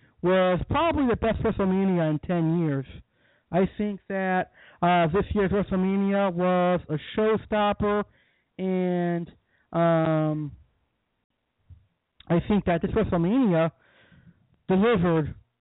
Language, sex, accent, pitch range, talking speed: English, male, American, 170-210 Hz, 100 wpm